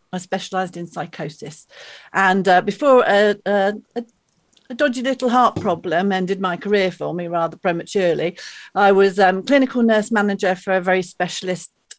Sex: female